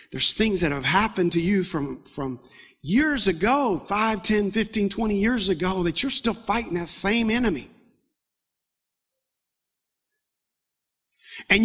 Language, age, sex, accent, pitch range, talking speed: English, 50-69, male, American, 220-305 Hz, 130 wpm